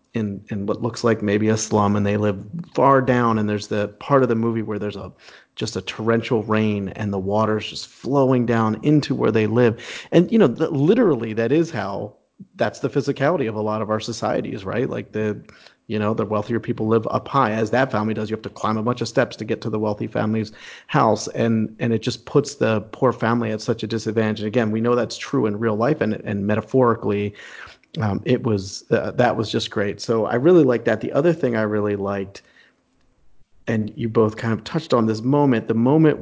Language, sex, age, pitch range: English, male, 40-59, 105-125 Hz